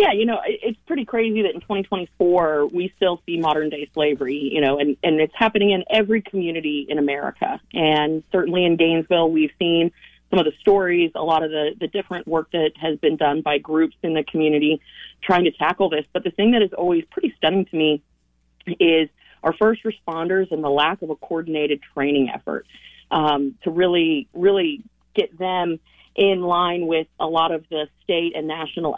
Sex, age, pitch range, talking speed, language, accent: female, 30-49, 150-180 Hz, 195 wpm, English, American